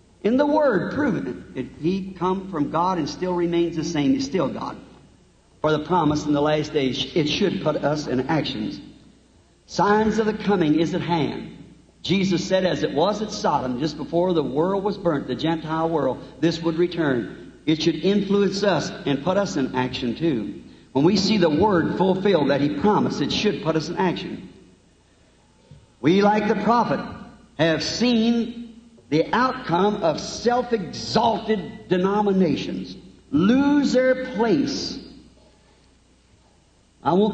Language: English